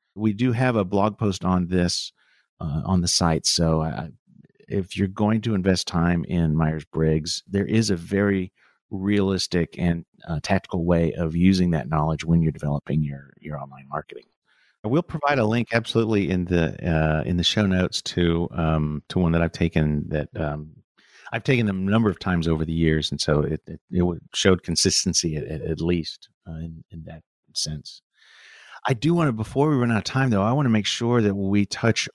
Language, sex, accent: English, male, American